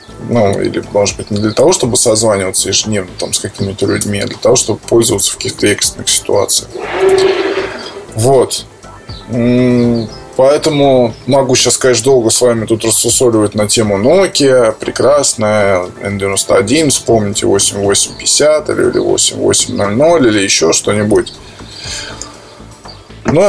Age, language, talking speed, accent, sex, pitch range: 20-39, Russian, 120 wpm, native, male, 105-130 Hz